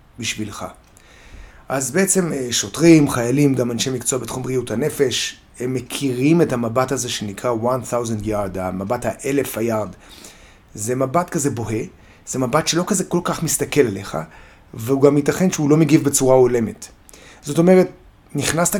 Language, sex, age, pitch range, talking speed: Hebrew, male, 30-49, 115-155 Hz, 145 wpm